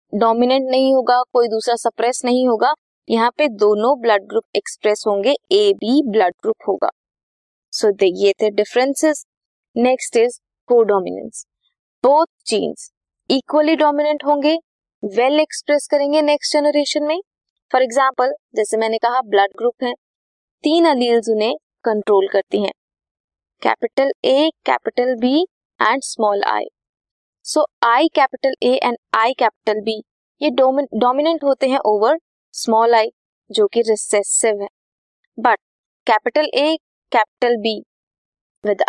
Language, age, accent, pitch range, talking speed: Hindi, 20-39, native, 215-295 Hz, 115 wpm